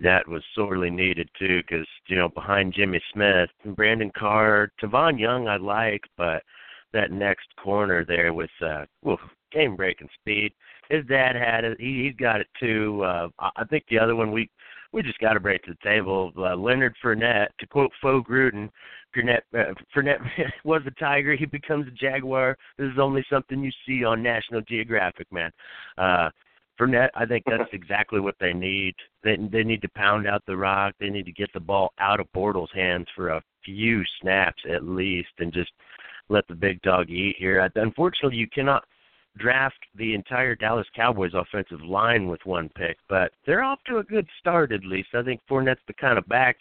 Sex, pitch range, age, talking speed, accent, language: male, 95-125 Hz, 50-69, 195 wpm, American, English